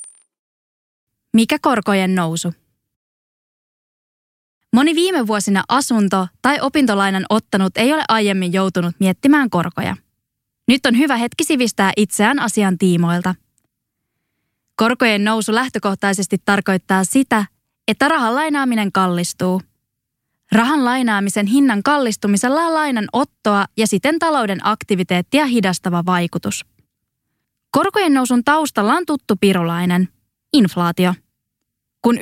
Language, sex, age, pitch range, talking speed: English, female, 20-39, 190-250 Hz, 95 wpm